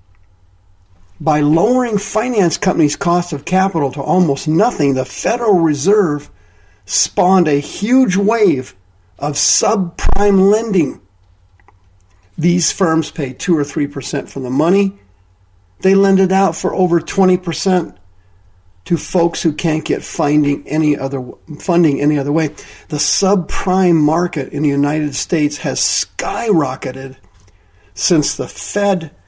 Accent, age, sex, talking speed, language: American, 50-69, male, 125 wpm, English